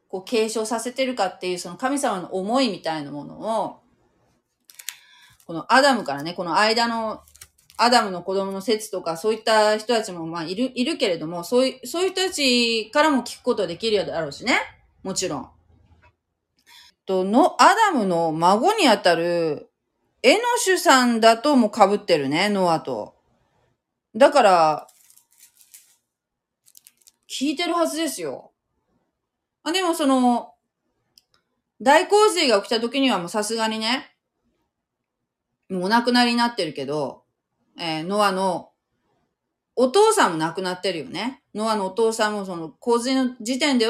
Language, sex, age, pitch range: Japanese, female, 30-49, 180-260 Hz